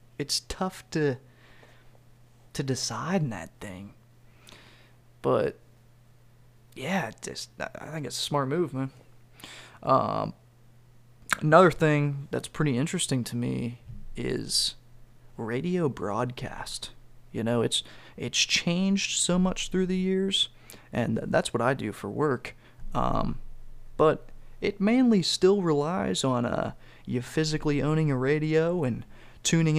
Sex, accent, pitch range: male, American, 120-155 Hz